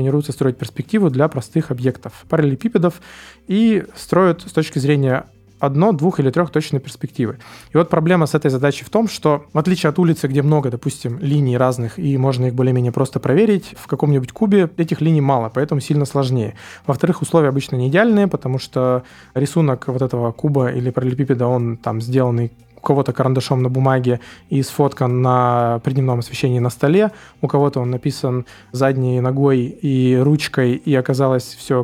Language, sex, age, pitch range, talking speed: Russian, male, 20-39, 125-155 Hz, 170 wpm